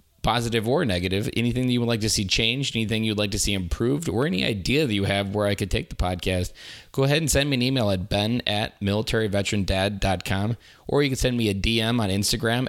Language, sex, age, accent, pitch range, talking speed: English, male, 20-39, American, 95-115 Hz, 230 wpm